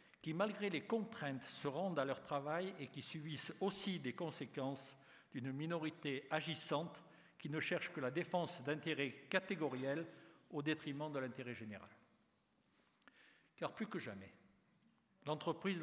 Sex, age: male, 60-79